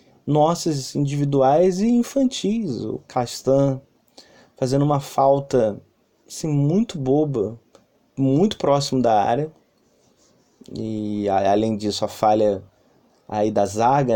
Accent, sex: Brazilian, male